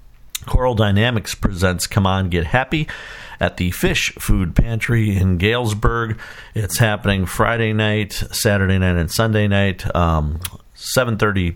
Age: 50-69